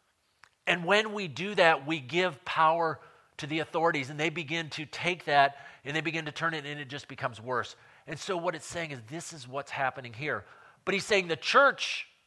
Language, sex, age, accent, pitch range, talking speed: English, male, 40-59, American, 140-180 Hz, 215 wpm